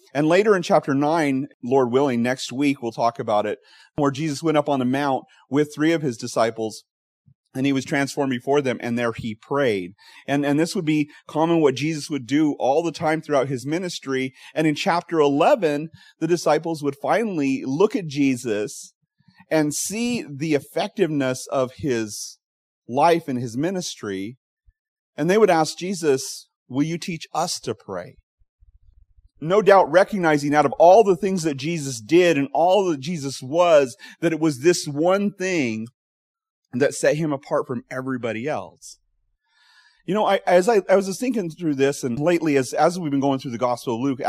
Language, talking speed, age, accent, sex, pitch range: English, 185 wpm, 30-49, American, male, 130-170 Hz